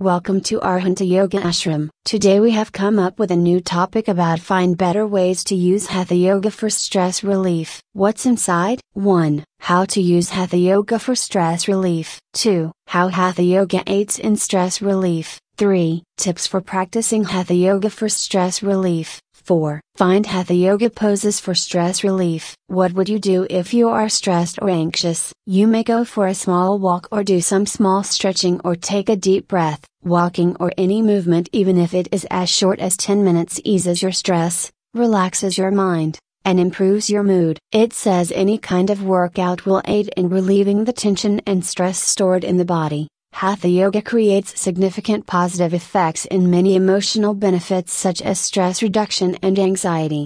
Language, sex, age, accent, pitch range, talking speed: English, female, 30-49, American, 180-200 Hz, 175 wpm